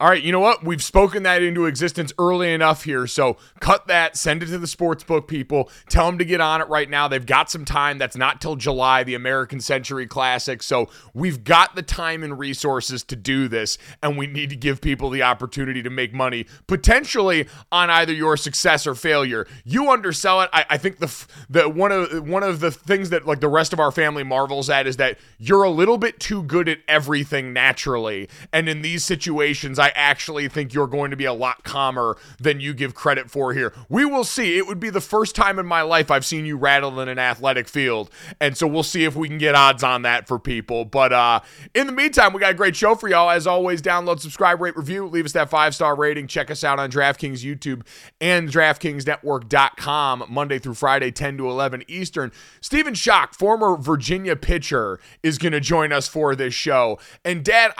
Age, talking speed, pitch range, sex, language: 30-49, 220 wpm, 135-175 Hz, male, English